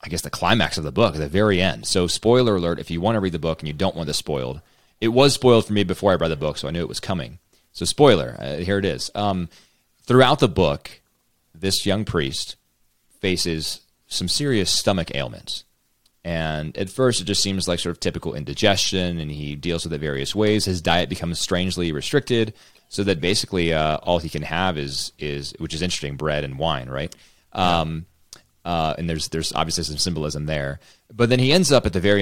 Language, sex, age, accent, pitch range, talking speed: English, male, 30-49, American, 75-100 Hz, 220 wpm